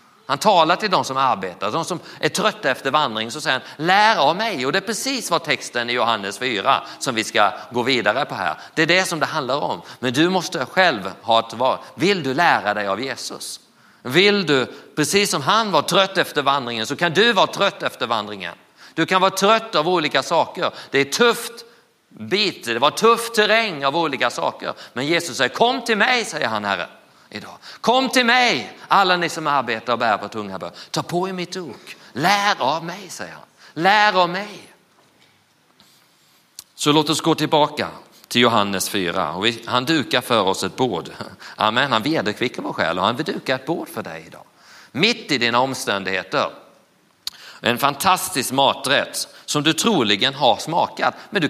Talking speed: 190 wpm